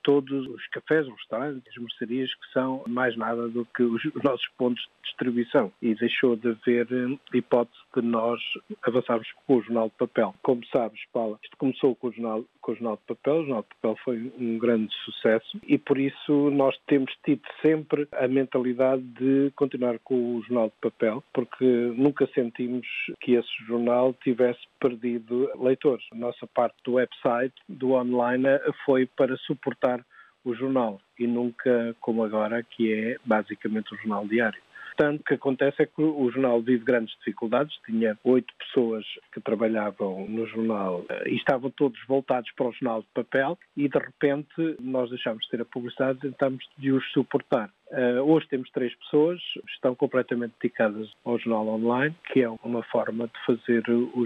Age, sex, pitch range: 50-69, male, 115-135 Hz